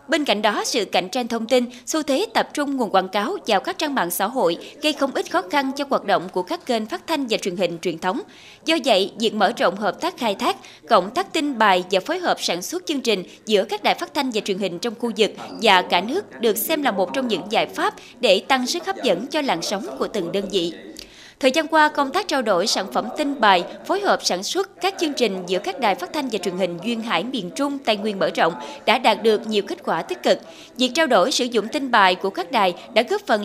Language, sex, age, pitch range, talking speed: Vietnamese, female, 20-39, 205-315 Hz, 265 wpm